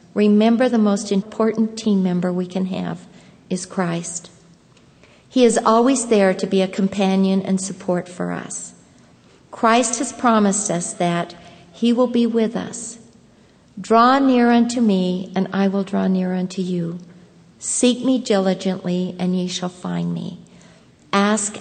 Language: English